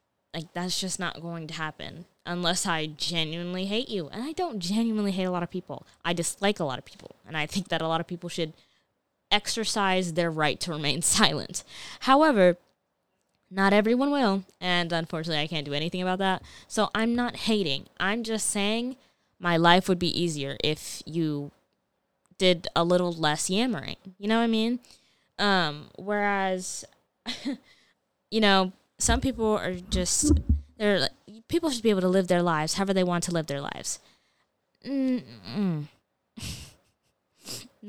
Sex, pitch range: female, 170-220 Hz